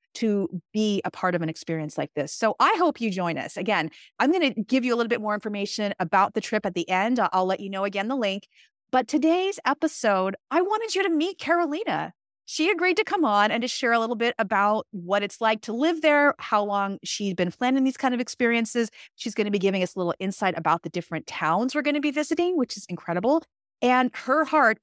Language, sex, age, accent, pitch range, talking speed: English, female, 30-49, American, 180-250 Hz, 240 wpm